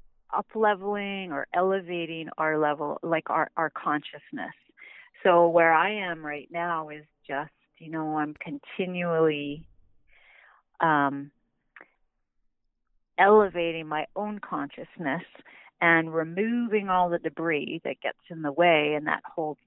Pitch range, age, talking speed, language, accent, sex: 150-185 Hz, 40-59, 120 wpm, English, American, female